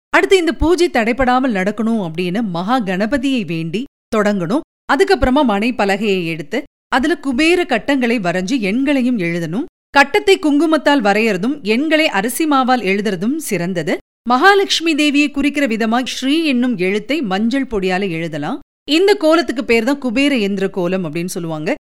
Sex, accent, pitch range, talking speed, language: female, native, 205-290 Hz, 125 wpm, Tamil